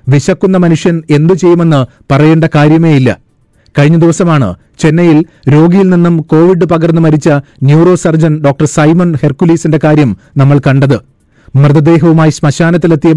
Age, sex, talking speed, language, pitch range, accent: 30-49, male, 110 wpm, Malayalam, 145-170 Hz, native